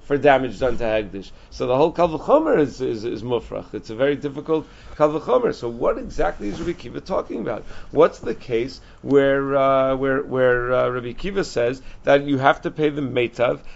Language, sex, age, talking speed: English, male, 40-59, 190 wpm